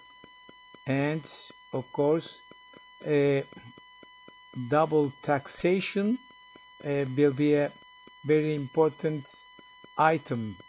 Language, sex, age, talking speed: Turkish, male, 60-79, 75 wpm